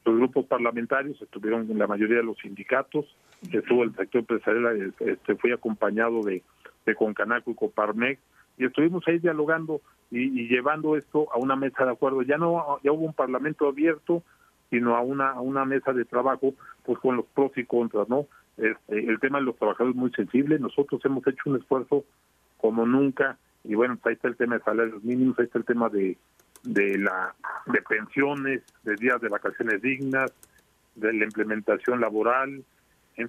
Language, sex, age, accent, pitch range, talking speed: Spanish, male, 40-59, Mexican, 115-140 Hz, 180 wpm